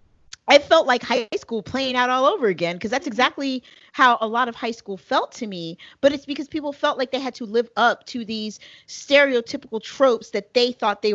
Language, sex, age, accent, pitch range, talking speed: English, female, 40-59, American, 190-260 Hz, 220 wpm